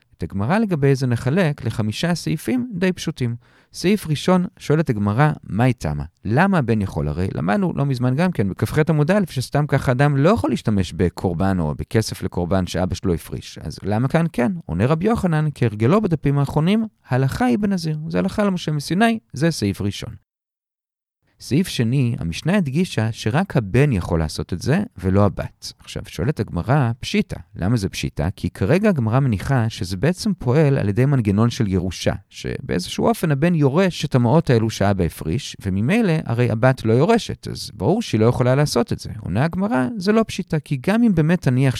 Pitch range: 105-165 Hz